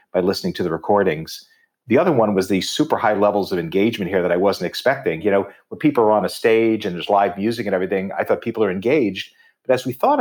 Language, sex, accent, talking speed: English, male, American, 255 wpm